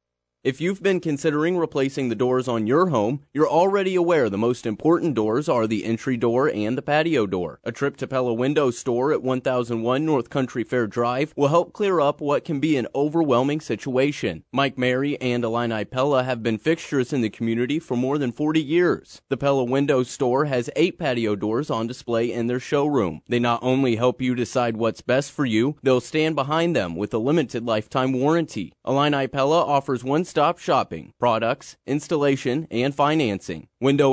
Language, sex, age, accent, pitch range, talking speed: English, male, 30-49, American, 120-150 Hz, 185 wpm